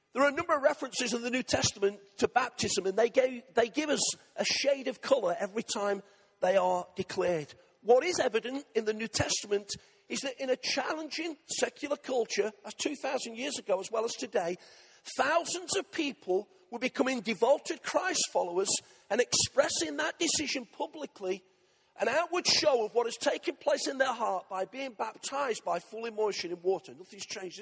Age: 40-59